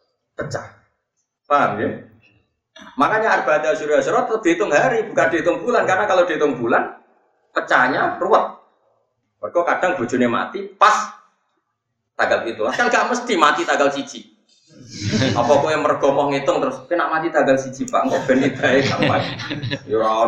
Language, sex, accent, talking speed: Indonesian, male, native, 140 wpm